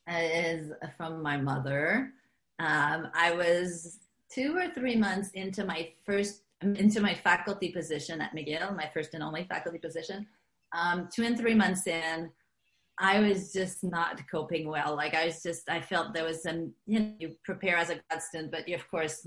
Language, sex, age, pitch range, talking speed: English, female, 30-49, 160-190 Hz, 185 wpm